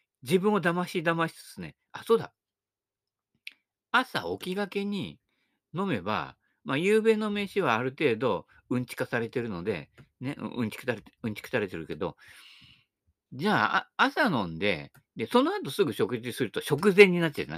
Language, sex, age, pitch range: Japanese, male, 50-69, 150-245 Hz